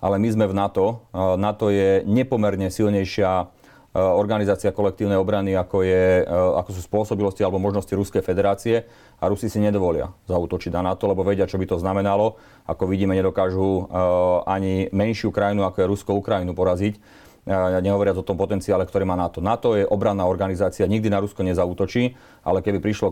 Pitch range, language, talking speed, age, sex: 95-105 Hz, Slovak, 160 wpm, 40-59, male